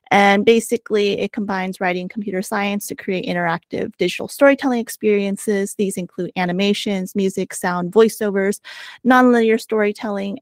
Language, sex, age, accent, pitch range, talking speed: English, female, 30-49, American, 185-225 Hz, 120 wpm